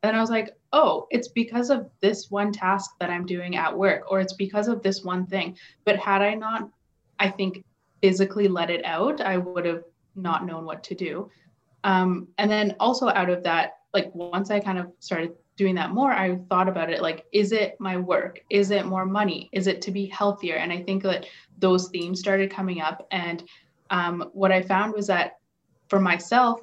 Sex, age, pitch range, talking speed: female, 20-39, 180-200 Hz, 210 wpm